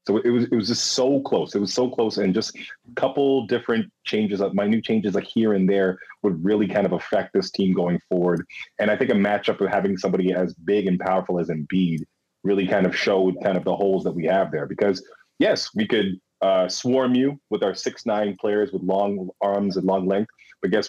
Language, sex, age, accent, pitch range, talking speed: English, male, 30-49, American, 95-120 Hz, 235 wpm